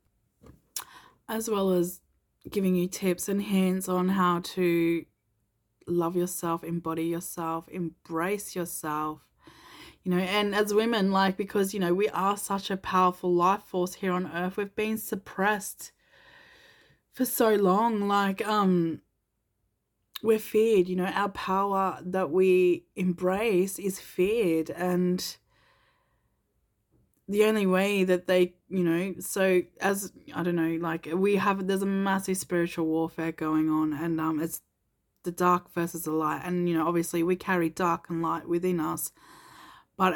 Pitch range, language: 165-195 Hz, English